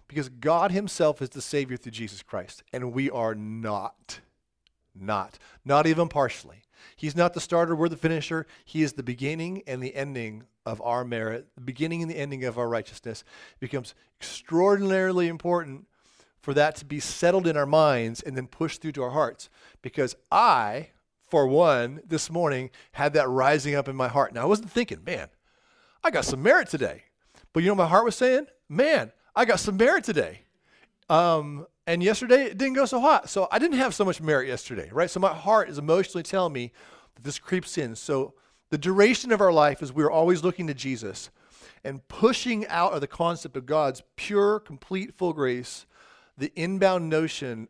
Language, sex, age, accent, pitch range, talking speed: English, male, 40-59, American, 125-175 Hz, 190 wpm